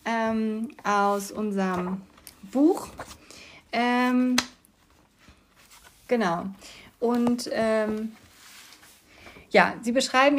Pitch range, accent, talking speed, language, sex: 205-245 Hz, German, 65 wpm, German, female